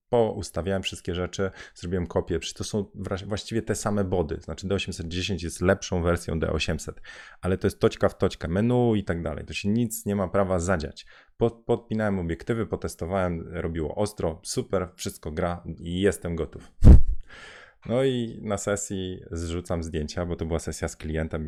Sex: male